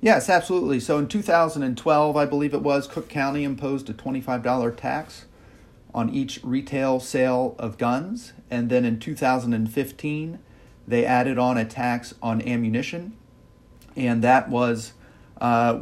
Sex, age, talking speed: male, 40-59, 135 wpm